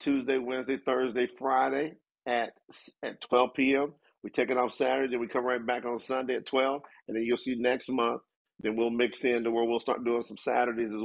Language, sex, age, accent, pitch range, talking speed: English, male, 50-69, American, 120-155 Hz, 215 wpm